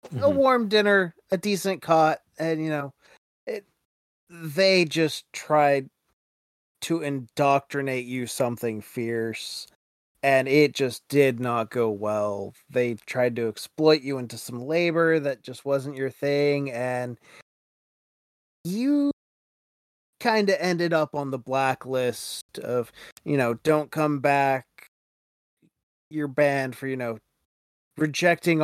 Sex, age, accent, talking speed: male, 20-39, American, 125 wpm